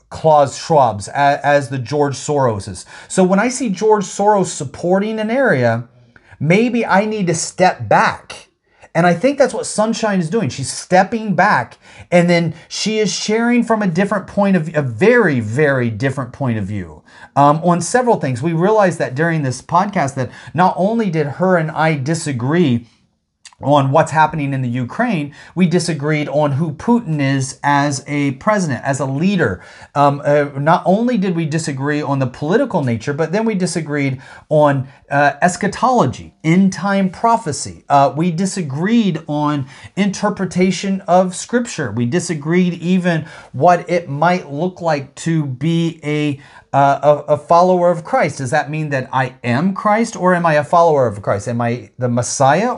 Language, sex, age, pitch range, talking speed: English, male, 30-49, 140-185 Hz, 170 wpm